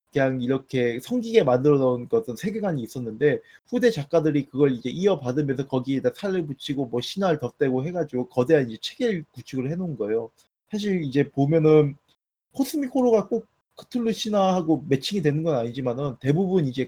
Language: Korean